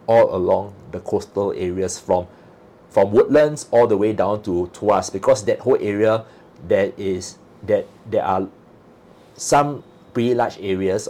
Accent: Malaysian